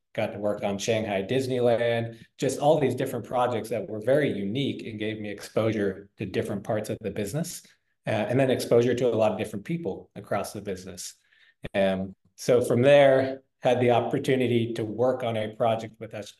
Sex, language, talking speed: male, English, 190 wpm